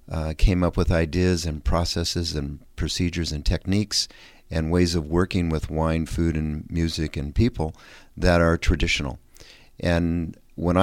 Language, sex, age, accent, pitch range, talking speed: English, male, 50-69, American, 80-95 Hz, 150 wpm